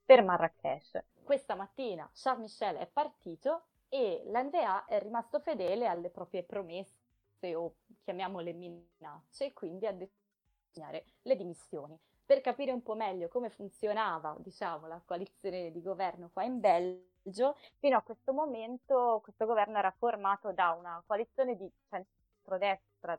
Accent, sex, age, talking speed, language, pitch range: native, female, 20-39, 135 wpm, Italian, 175-230 Hz